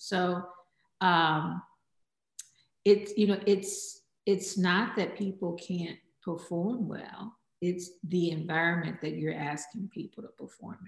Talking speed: 120 wpm